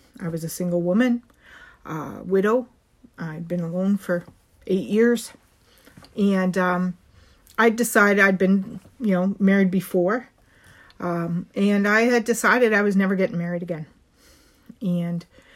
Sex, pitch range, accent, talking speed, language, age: female, 180-230 Hz, American, 145 wpm, English, 40-59